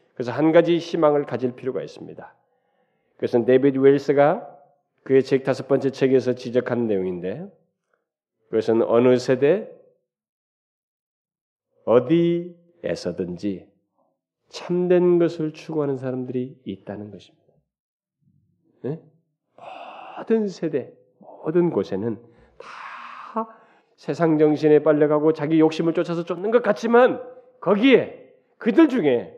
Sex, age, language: male, 40-59, Korean